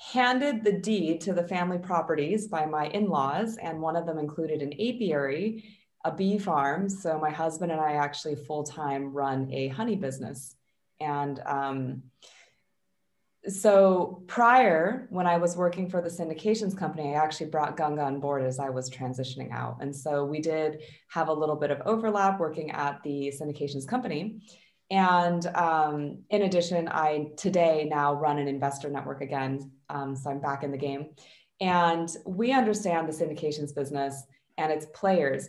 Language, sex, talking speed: English, female, 165 wpm